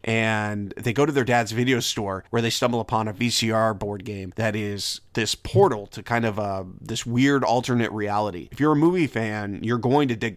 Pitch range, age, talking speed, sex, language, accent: 100-125 Hz, 30-49, 215 wpm, male, English, American